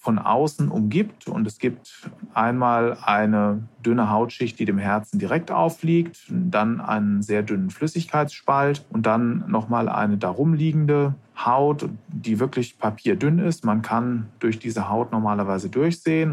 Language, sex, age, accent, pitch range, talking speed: German, male, 40-59, German, 110-135 Hz, 135 wpm